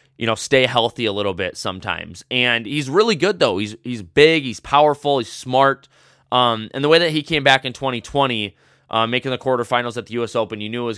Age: 20-39